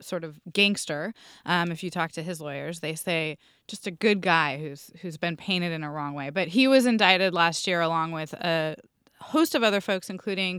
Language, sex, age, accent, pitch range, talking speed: English, female, 20-39, American, 170-205 Hz, 215 wpm